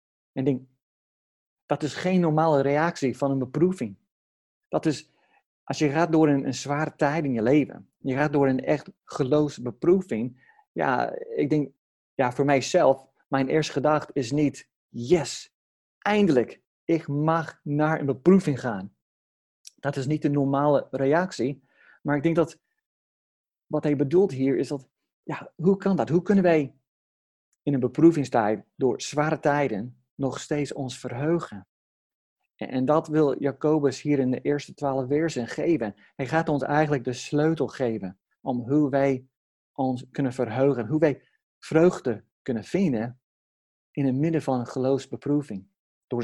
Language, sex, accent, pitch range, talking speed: Dutch, male, Dutch, 125-155 Hz, 155 wpm